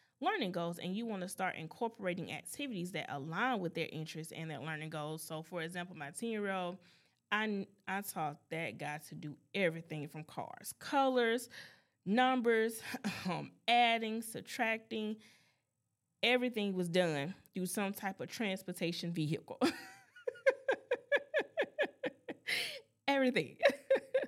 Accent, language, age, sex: American, English, 20-39, female